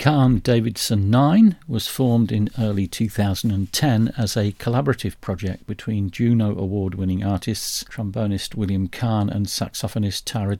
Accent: British